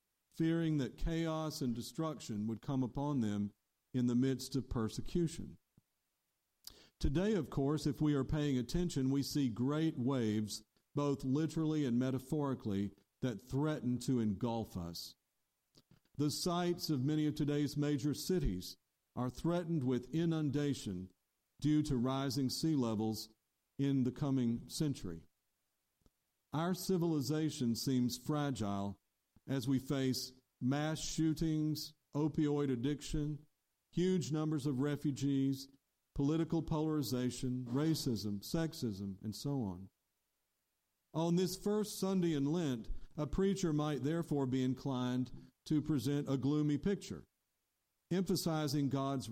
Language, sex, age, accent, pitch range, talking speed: English, male, 50-69, American, 125-155 Hz, 120 wpm